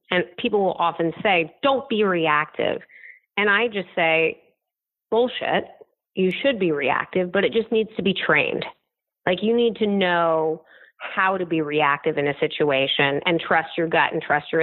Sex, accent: female, American